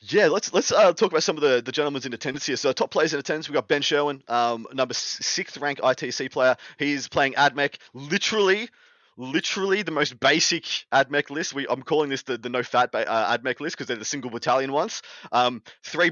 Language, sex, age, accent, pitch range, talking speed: English, male, 20-39, Australian, 115-145 Hz, 220 wpm